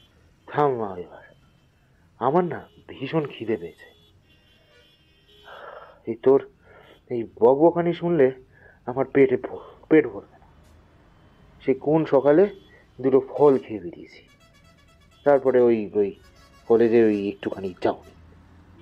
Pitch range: 95-150 Hz